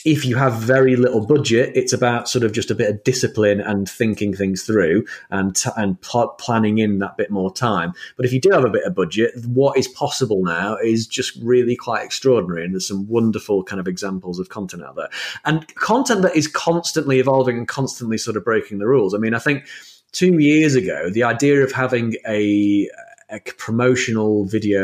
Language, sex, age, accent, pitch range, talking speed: English, male, 30-49, British, 105-130 Hz, 210 wpm